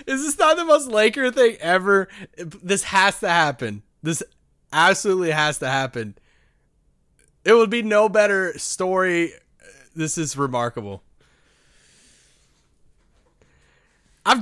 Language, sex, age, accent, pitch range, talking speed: English, male, 20-39, American, 155-215 Hz, 110 wpm